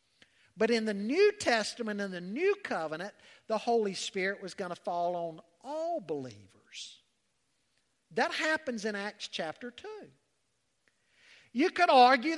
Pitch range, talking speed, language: 210-285 Hz, 135 wpm, English